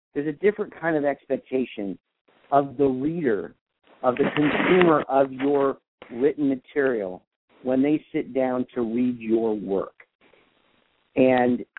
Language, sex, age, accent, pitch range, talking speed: English, male, 50-69, American, 125-155 Hz, 125 wpm